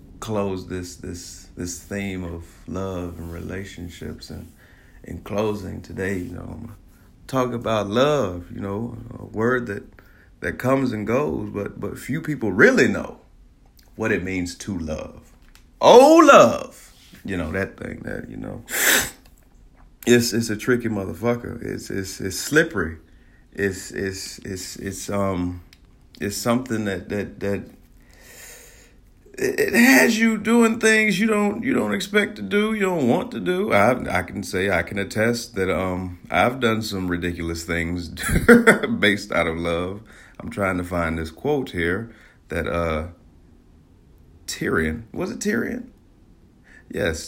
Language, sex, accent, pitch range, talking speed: English, male, American, 85-120 Hz, 145 wpm